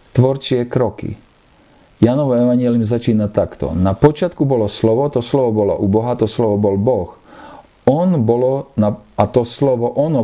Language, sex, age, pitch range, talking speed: Slovak, male, 50-69, 100-125 Hz, 150 wpm